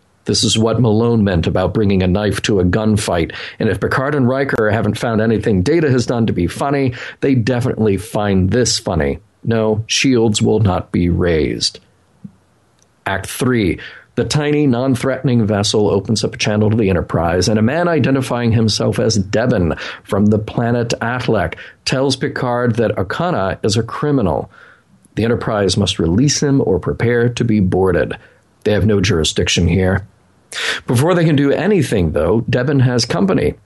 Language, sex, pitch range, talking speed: English, male, 100-125 Hz, 165 wpm